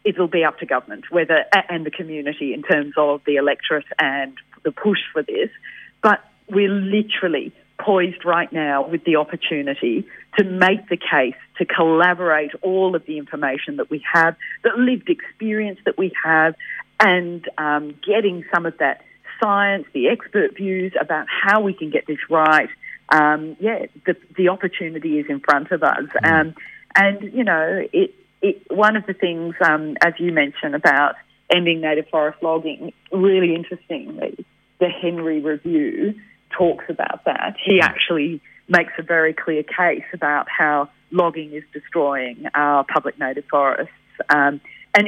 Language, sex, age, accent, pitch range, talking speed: English, female, 40-59, Australian, 155-195 Hz, 155 wpm